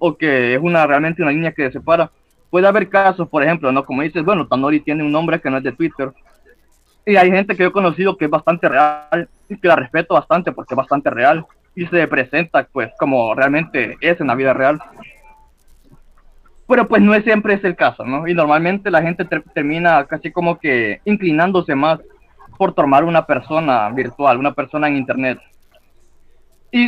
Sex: male